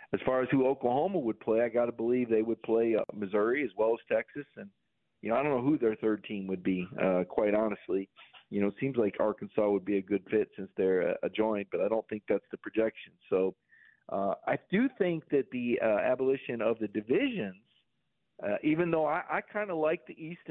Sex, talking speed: male, 230 wpm